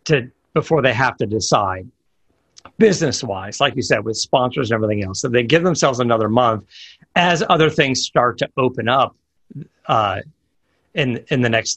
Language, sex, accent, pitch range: English, male, American, 110-140 Hz